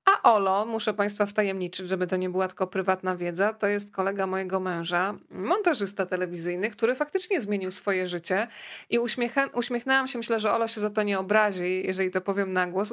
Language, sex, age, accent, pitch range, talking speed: Polish, female, 20-39, native, 190-230 Hz, 185 wpm